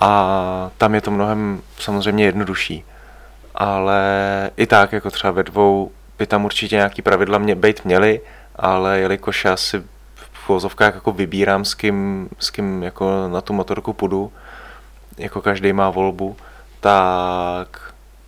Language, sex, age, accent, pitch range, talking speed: Czech, male, 20-39, native, 95-105 Hz, 140 wpm